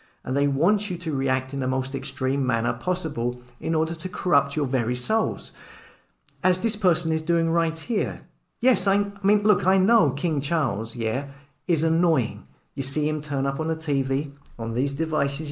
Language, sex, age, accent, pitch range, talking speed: English, male, 40-59, British, 130-180 Hz, 190 wpm